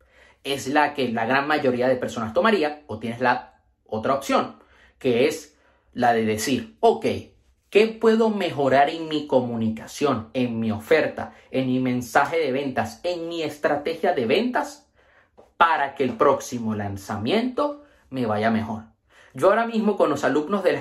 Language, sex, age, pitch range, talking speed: Spanish, male, 30-49, 125-215 Hz, 160 wpm